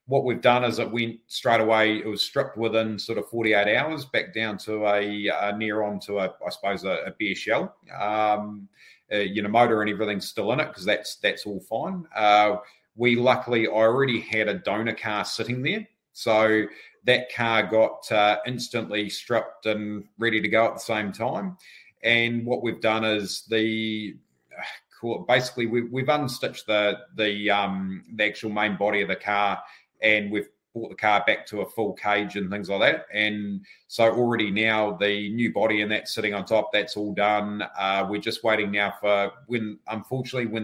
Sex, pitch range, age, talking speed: male, 105-115 Hz, 30-49, 190 wpm